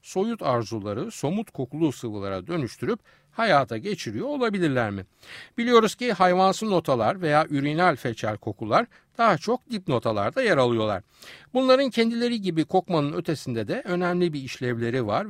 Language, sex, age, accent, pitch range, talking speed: Turkish, male, 60-79, native, 120-195 Hz, 135 wpm